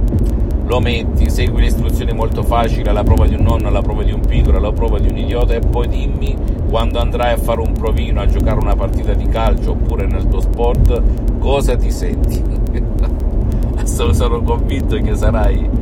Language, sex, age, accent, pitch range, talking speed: Italian, male, 50-69, native, 80-110 Hz, 185 wpm